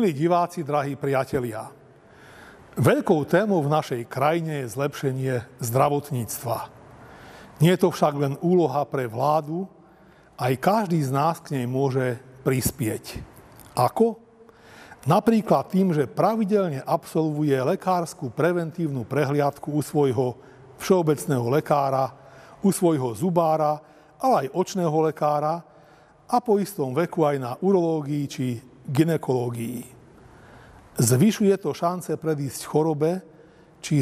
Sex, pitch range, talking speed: male, 140-175 Hz, 110 wpm